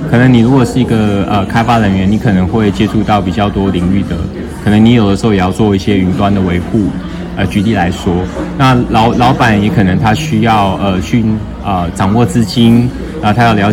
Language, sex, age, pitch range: Chinese, male, 20-39, 90-120 Hz